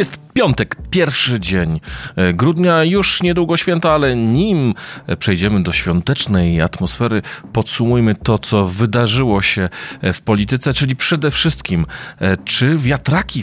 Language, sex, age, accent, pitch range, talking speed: Polish, male, 40-59, native, 95-125 Hz, 115 wpm